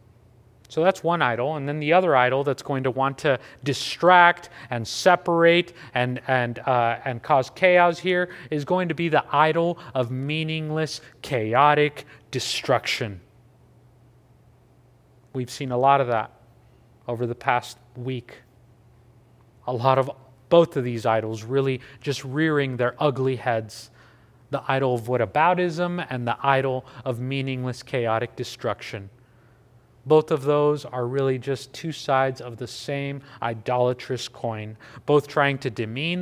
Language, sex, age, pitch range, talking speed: English, male, 30-49, 120-150 Hz, 140 wpm